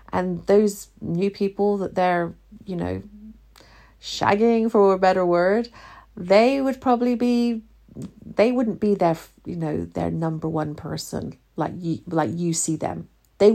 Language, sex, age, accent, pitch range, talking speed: English, female, 40-59, British, 165-215 Hz, 145 wpm